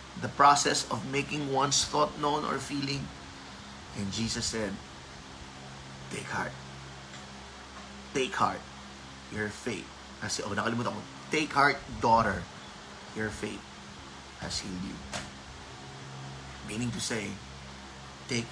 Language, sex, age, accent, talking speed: Filipino, male, 20-39, native, 110 wpm